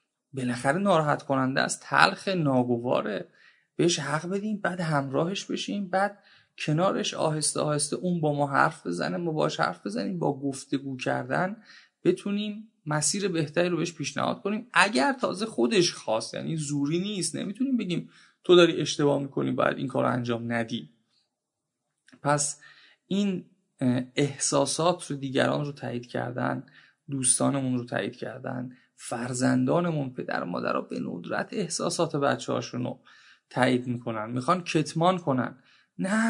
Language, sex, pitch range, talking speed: Persian, male, 140-185 Hz, 130 wpm